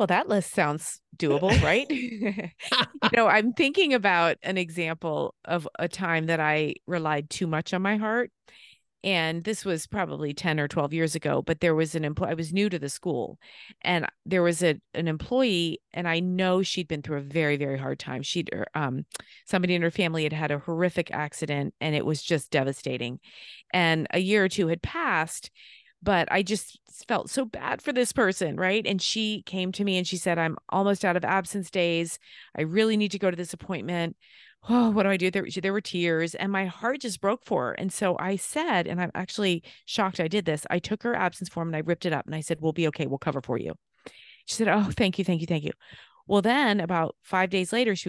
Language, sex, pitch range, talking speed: English, female, 165-200 Hz, 220 wpm